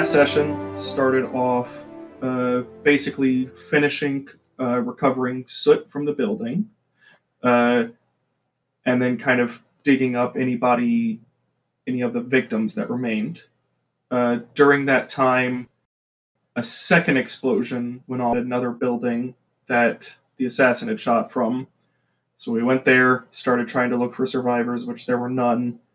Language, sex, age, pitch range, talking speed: English, male, 20-39, 125-140 Hz, 130 wpm